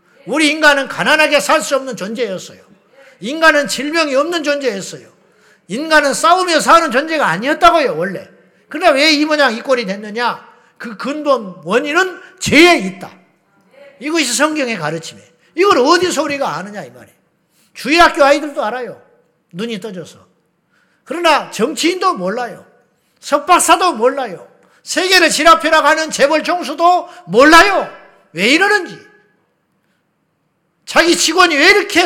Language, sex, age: Korean, male, 50-69